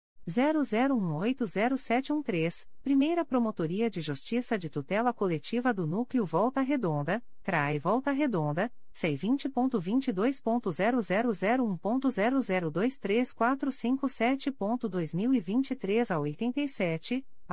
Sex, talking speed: female, 55 wpm